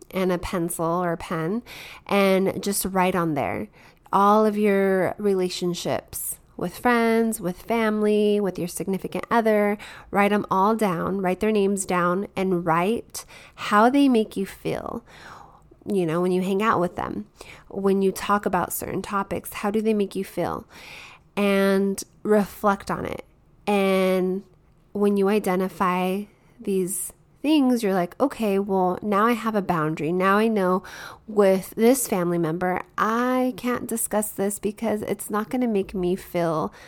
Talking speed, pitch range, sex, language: 155 wpm, 180-210 Hz, female, English